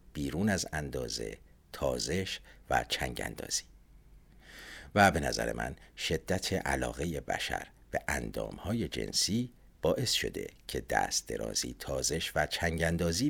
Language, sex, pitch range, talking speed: Persian, male, 75-110 Hz, 110 wpm